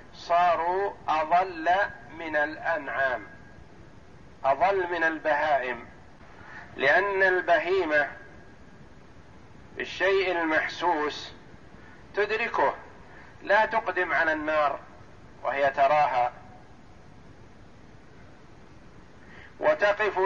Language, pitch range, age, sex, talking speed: Arabic, 160-195 Hz, 50-69, male, 55 wpm